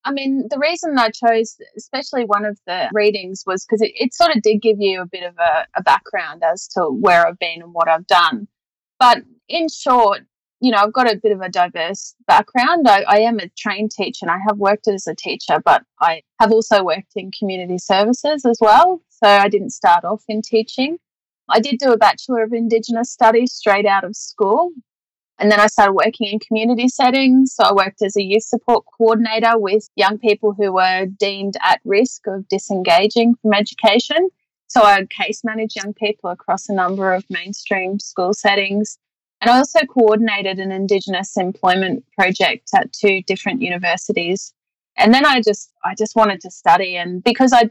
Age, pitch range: 30-49, 190-230 Hz